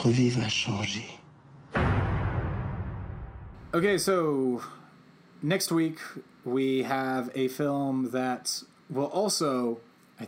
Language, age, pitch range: English, 30-49, 125-160 Hz